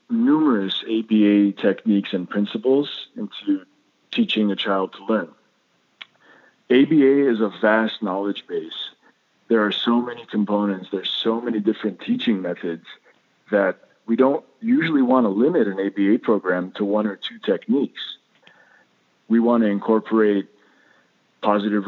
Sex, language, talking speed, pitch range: male, English, 130 wpm, 100-120 Hz